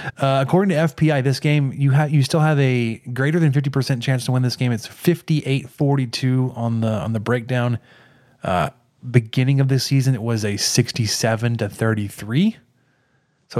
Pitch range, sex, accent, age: 115-140 Hz, male, American, 30-49